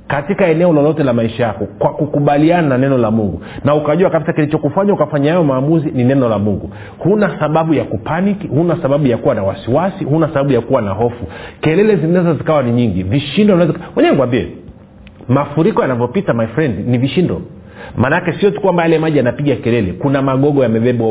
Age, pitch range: 40-59, 120-160 Hz